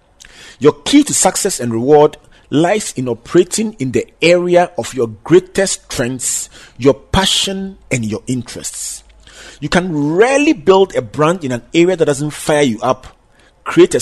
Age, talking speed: 40-59, 155 wpm